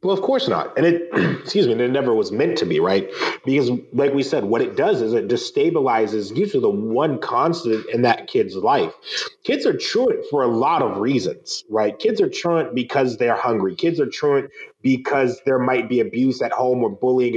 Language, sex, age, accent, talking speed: English, male, 30-49, American, 205 wpm